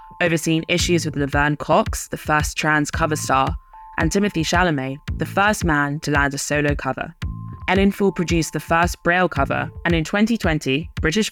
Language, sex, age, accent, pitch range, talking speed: English, female, 10-29, British, 145-175 Hz, 170 wpm